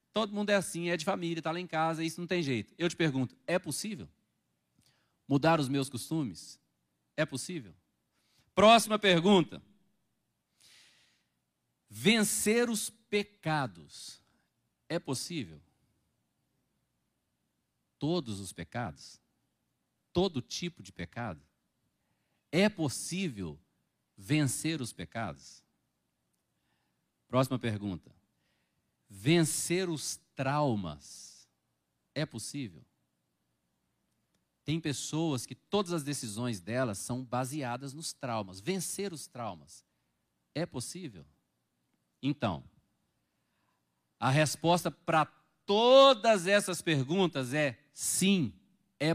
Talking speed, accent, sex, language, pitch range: 95 wpm, Brazilian, male, Portuguese, 115-180 Hz